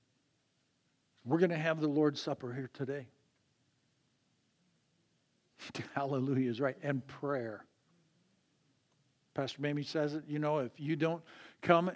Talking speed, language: 120 wpm, English